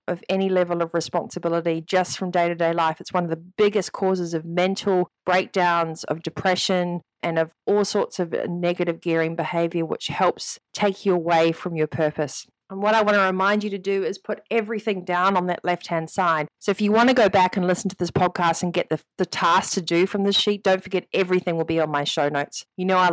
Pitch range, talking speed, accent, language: 170-200 Hz, 225 wpm, Australian, English